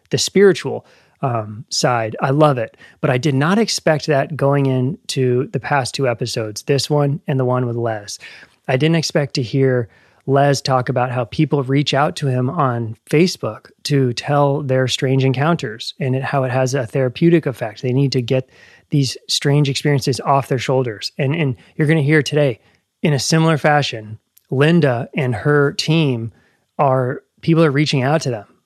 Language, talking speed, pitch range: English, 180 wpm, 125-150 Hz